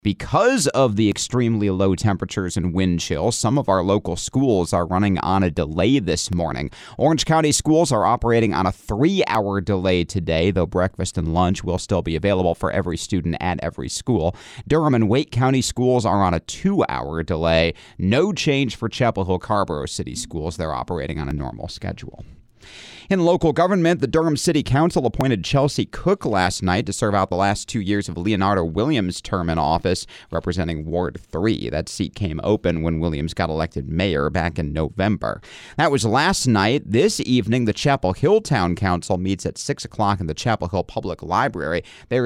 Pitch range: 85-120 Hz